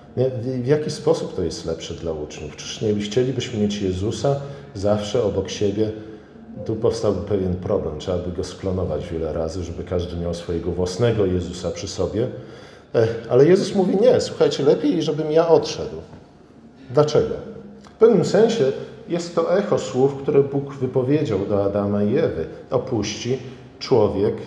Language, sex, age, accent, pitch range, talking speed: Polish, male, 40-59, native, 100-140 Hz, 145 wpm